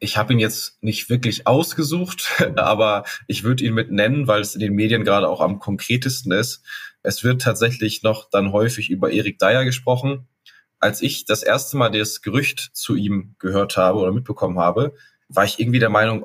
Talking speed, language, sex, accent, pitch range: 190 wpm, German, male, German, 100-115 Hz